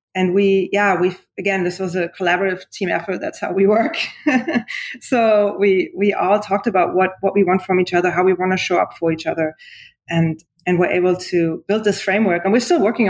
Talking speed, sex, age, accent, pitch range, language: 225 wpm, female, 20-39, German, 175-205 Hz, English